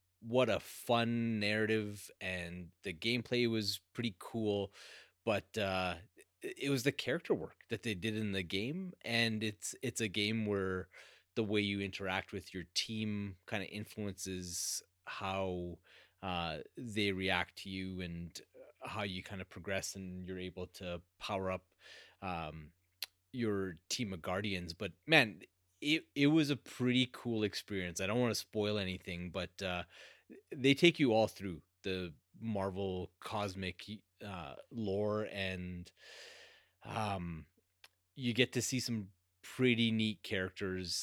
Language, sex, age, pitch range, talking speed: English, male, 30-49, 95-110 Hz, 145 wpm